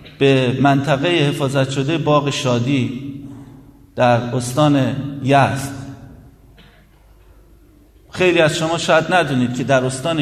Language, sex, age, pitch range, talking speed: Persian, male, 50-69, 135-160 Hz, 100 wpm